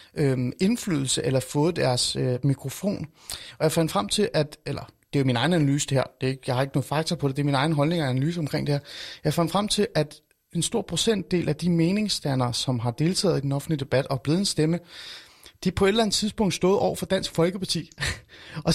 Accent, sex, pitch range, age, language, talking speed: native, male, 145-180 Hz, 30-49, Danish, 240 wpm